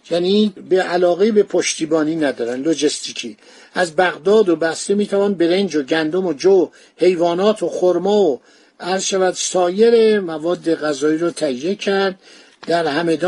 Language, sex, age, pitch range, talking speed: Persian, male, 60-79, 165-200 Hz, 135 wpm